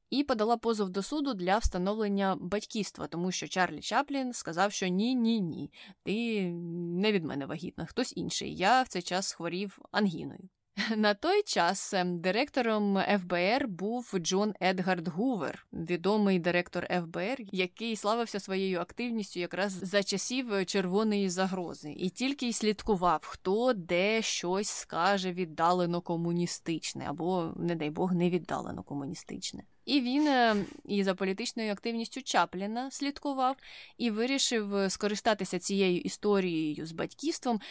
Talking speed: 130 wpm